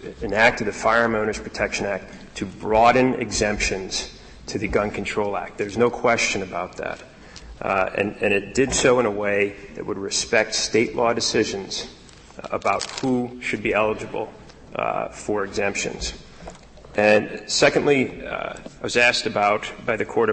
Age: 30-49